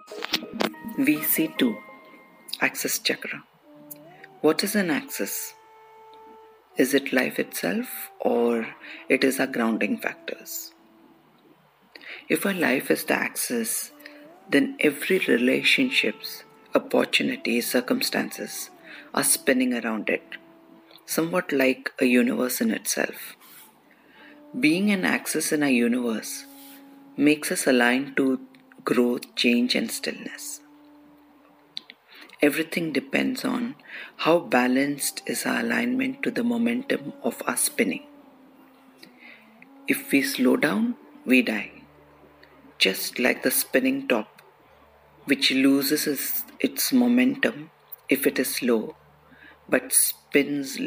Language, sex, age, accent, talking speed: English, female, 50-69, Indian, 105 wpm